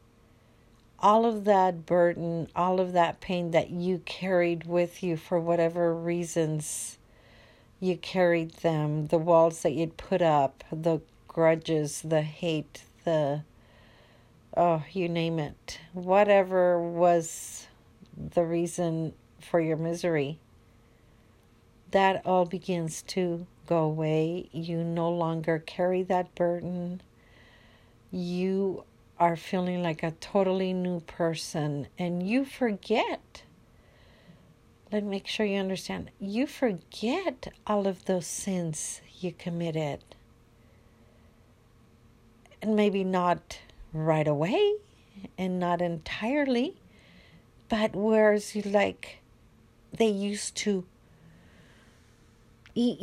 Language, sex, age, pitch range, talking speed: English, female, 50-69, 145-185 Hz, 105 wpm